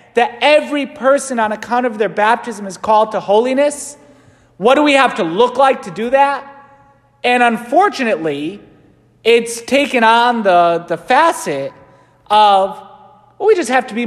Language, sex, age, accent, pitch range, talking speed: English, male, 30-49, American, 195-275 Hz, 160 wpm